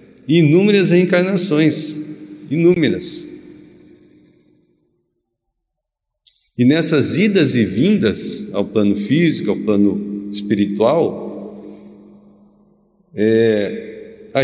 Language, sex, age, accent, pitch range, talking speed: Portuguese, male, 50-69, Brazilian, 120-180 Hz, 60 wpm